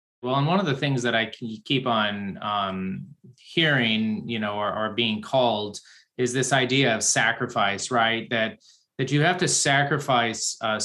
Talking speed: 175 wpm